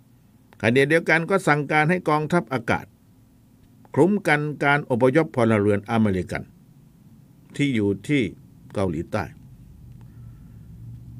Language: Thai